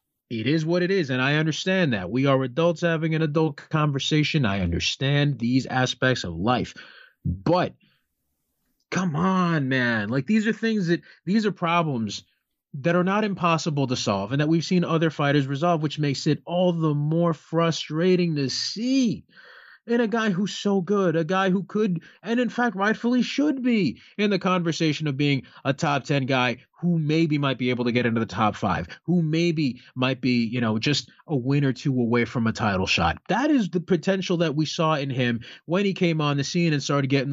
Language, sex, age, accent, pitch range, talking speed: English, male, 30-49, American, 130-175 Hz, 205 wpm